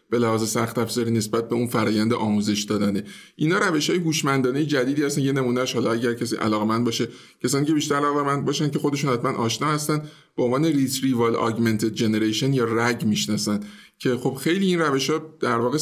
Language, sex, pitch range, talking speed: Persian, male, 115-145 Hz, 175 wpm